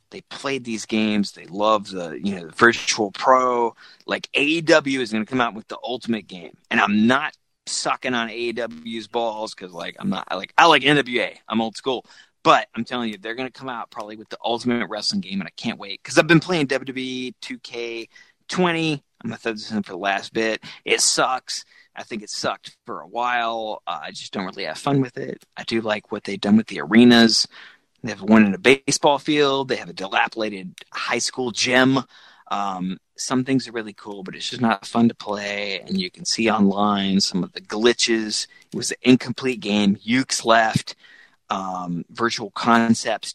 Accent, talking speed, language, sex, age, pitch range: American, 210 wpm, English, male, 30-49, 105-130 Hz